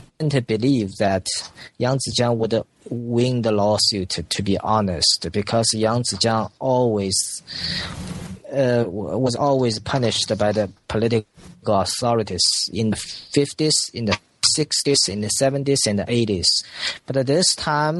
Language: English